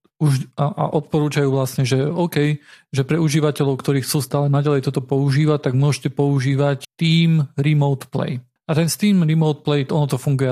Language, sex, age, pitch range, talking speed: Slovak, male, 40-59, 140-160 Hz, 165 wpm